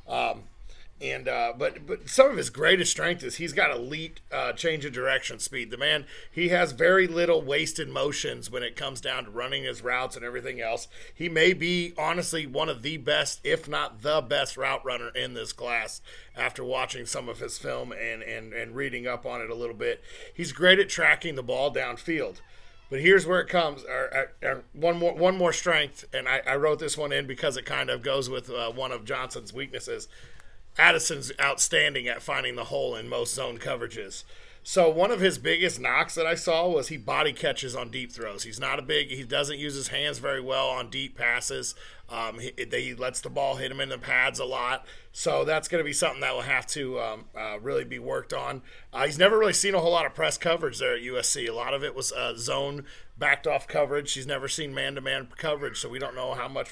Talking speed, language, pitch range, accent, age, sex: 225 wpm, English, 140-190 Hz, American, 40-59, male